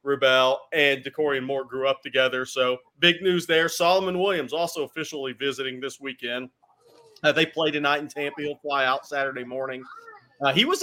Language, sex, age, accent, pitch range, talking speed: English, male, 40-59, American, 130-160 Hz, 185 wpm